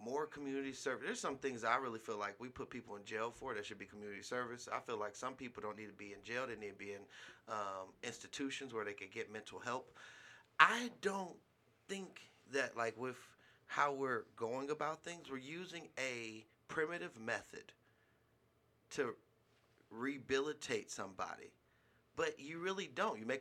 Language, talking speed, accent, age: English, 180 wpm, American, 30-49